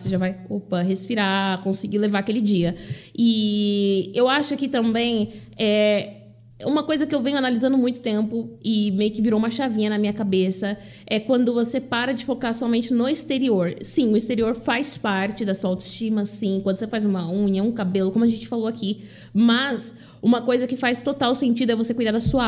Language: Portuguese